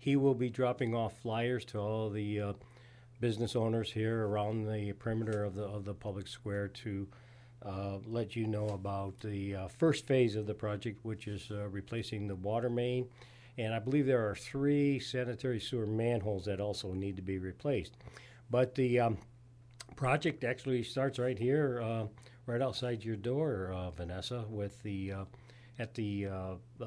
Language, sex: English, male